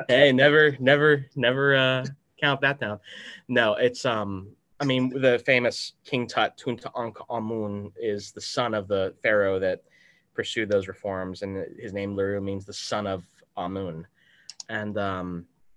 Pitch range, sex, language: 95-110 Hz, male, English